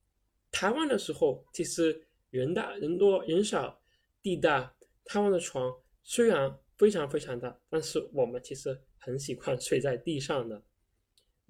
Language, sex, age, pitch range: Chinese, male, 10-29, 135-205 Hz